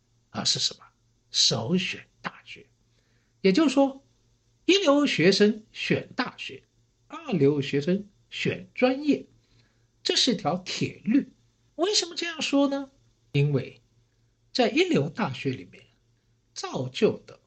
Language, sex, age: Chinese, male, 60-79